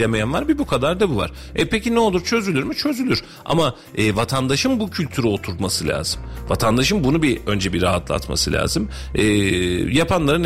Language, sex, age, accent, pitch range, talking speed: Turkish, male, 40-59, native, 95-135 Hz, 180 wpm